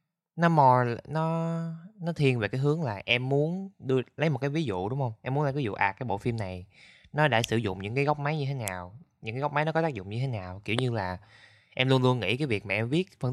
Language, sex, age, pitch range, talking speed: Vietnamese, male, 20-39, 105-145 Hz, 290 wpm